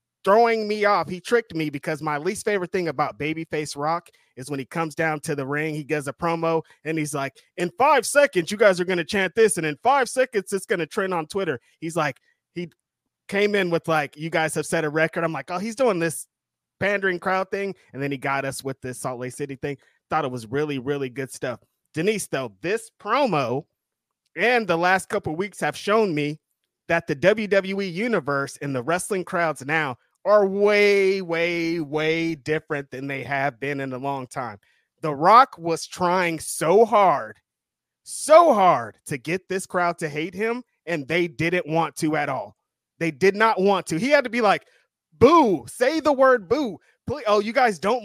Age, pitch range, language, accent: 20-39, 150-200 Hz, English, American